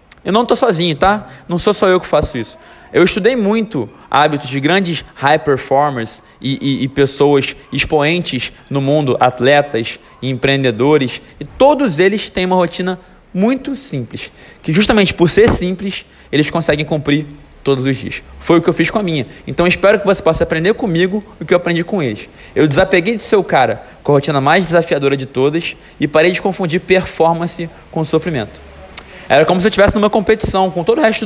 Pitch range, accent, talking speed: 140-185 Hz, Brazilian, 190 wpm